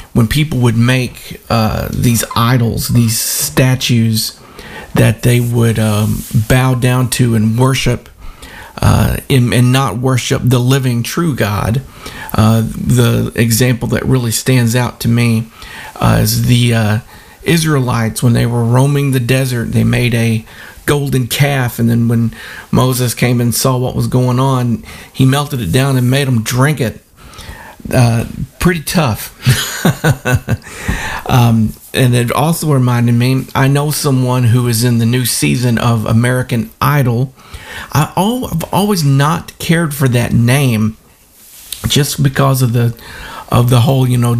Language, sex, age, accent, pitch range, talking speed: English, male, 40-59, American, 115-135 Hz, 145 wpm